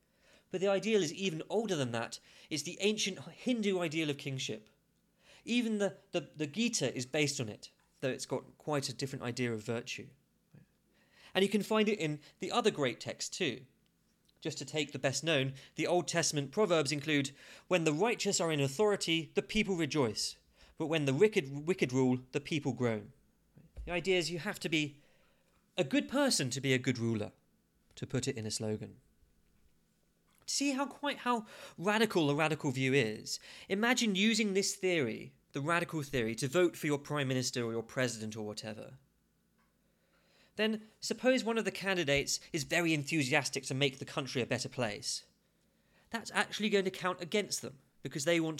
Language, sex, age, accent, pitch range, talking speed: English, male, 30-49, British, 135-195 Hz, 180 wpm